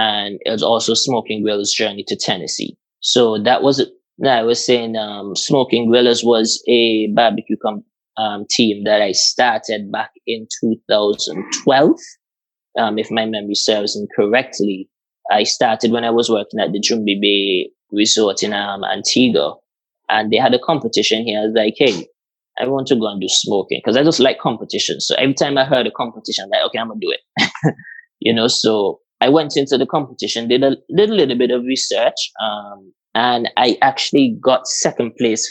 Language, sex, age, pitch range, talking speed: English, male, 20-39, 110-140 Hz, 190 wpm